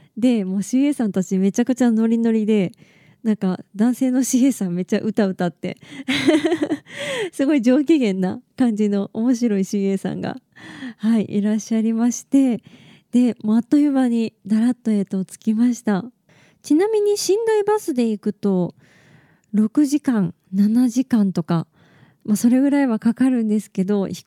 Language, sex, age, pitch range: Japanese, female, 20-39, 190-260 Hz